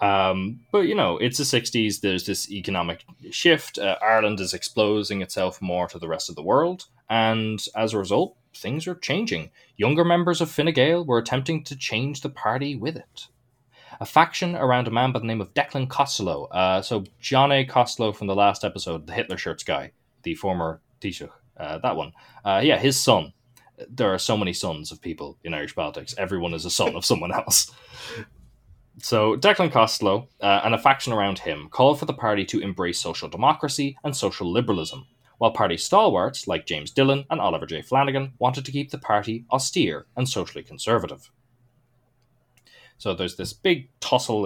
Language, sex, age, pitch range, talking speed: English, male, 20-39, 100-135 Hz, 180 wpm